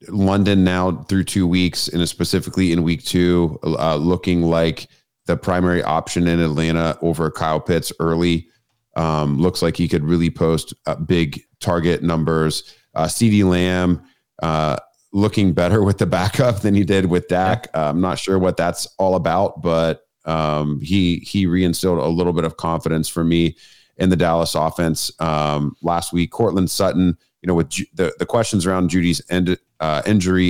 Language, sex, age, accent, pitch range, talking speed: English, male, 30-49, American, 80-95 Hz, 170 wpm